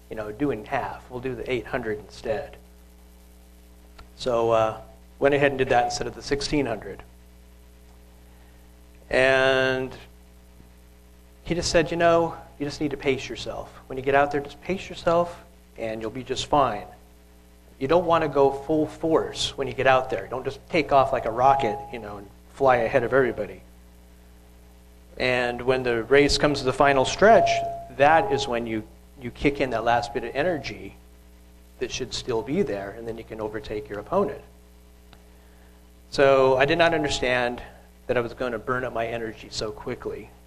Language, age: English, 40-59